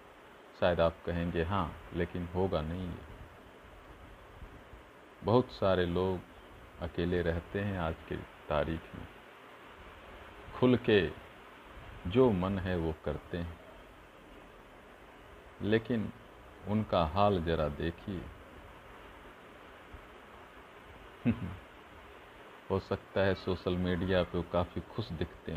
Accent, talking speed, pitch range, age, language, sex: native, 95 wpm, 85-115 Hz, 50-69, Hindi, male